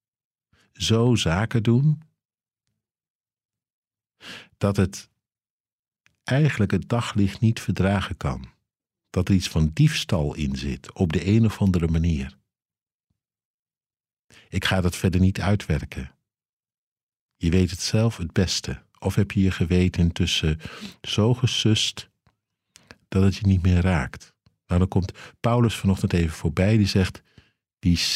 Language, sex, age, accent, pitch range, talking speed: Dutch, male, 50-69, Dutch, 90-115 Hz, 130 wpm